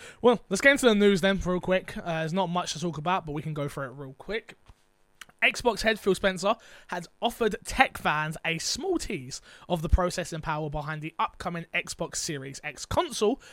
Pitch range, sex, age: 155-215 Hz, male, 20-39